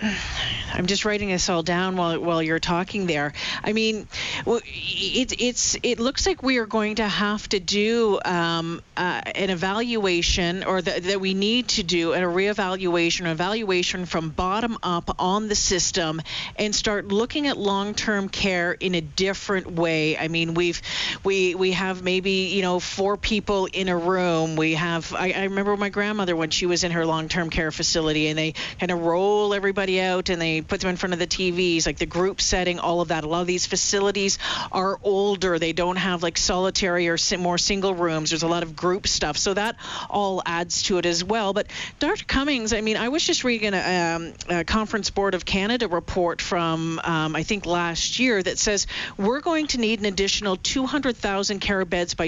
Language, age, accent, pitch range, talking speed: English, 40-59, American, 170-205 Hz, 200 wpm